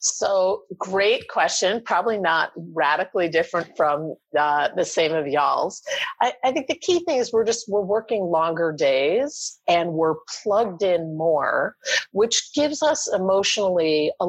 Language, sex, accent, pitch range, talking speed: English, female, American, 155-220 Hz, 150 wpm